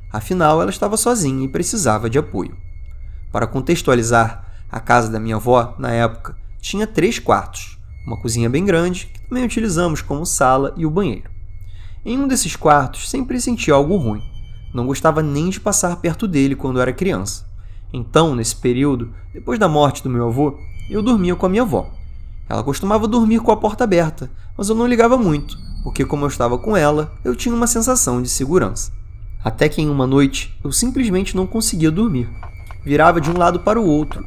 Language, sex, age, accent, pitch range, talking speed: Portuguese, male, 20-39, Brazilian, 110-180 Hz, 185 wpm